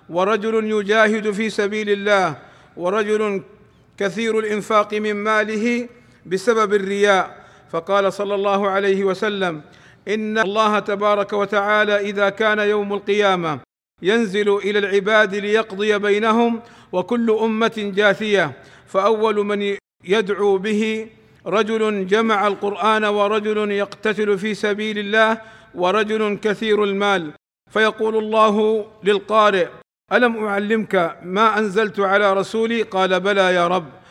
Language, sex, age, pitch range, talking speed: Arabic, male, 50-69, 195-215 Hz, 105 wpm